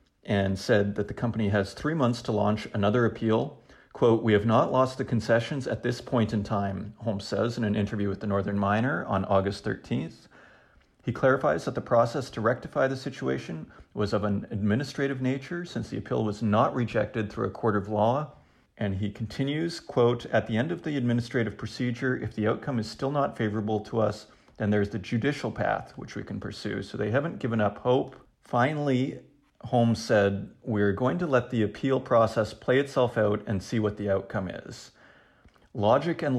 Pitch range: 105-125 Hz